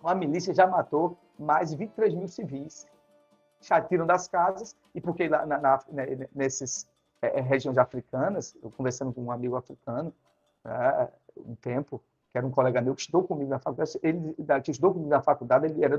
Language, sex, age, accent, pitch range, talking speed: Portuguese, male, 50-69, Brazilian, 145-205 Hz, 185 wpm